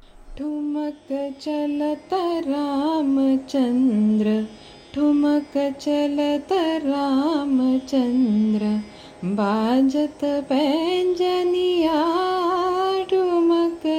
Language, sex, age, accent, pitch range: Marathi, female, 20-39, native, 240-300 Hz